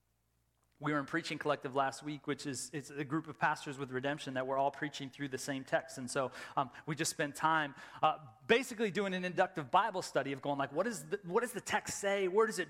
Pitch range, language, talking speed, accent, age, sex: 145-190 Hz, English, 245 wpm, American, 30-49, male